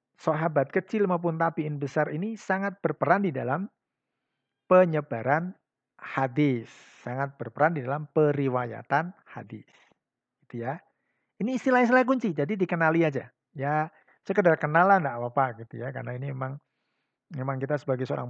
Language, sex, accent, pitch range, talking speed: Indonesian, male, native, 140-200 Hz, 130 wpm